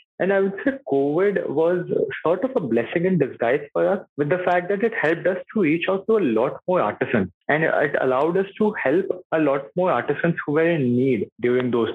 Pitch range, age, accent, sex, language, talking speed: 130-175 Hz, 20-39, Indian, male, English, 225 wpm